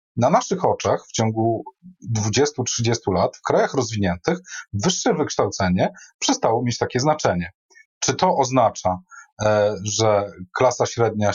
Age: 30-49